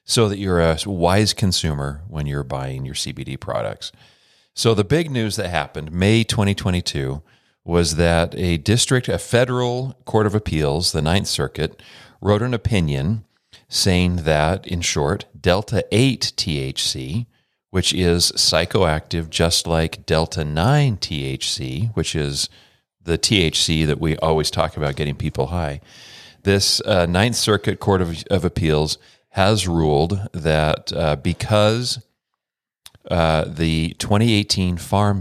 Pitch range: 80-105 Hz